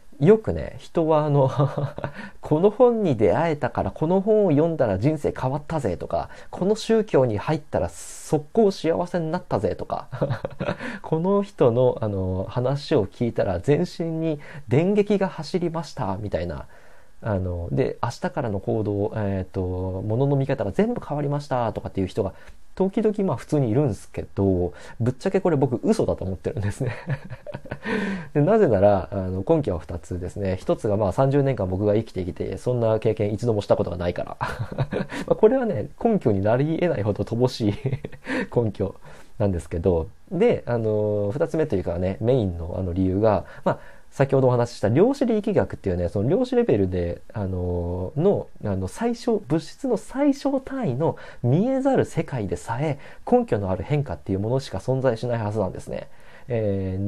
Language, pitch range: Japanese, 100-165 Hz